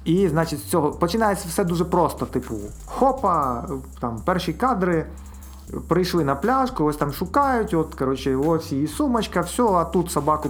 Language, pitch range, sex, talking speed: Ukrainian, 125-185 Hz, male, 160 wpm